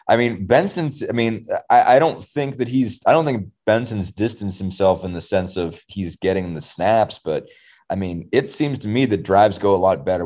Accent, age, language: American, 30-49, English